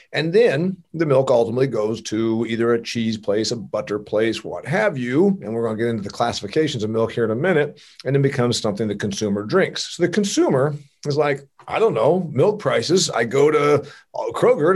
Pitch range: 115-155 Hz